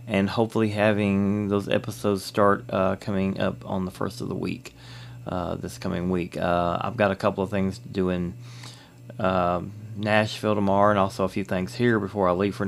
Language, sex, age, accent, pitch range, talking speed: English, male, 30-49, American, 95-120 Hz, 200 wpm